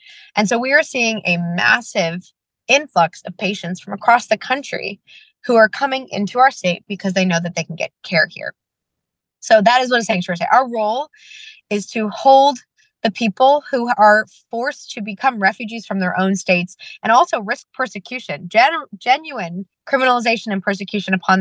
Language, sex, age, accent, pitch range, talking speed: English, female, 20-39, American, 185-255 Hz, 175 wpm